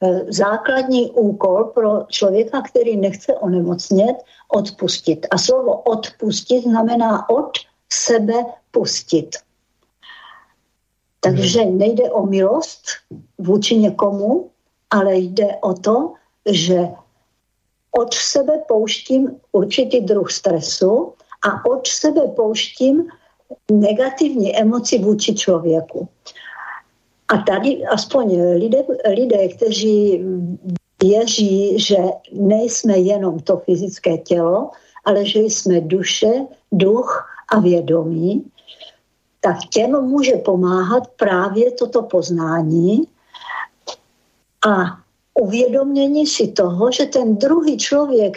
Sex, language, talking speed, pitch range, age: female, Slovak, 95 wpm, 195-260 Hz, 60-79